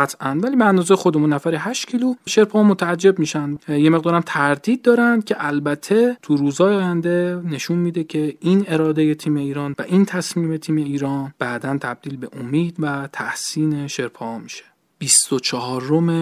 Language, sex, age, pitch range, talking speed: Persian, male, 40-59, 130-165 Hz, 160 wpm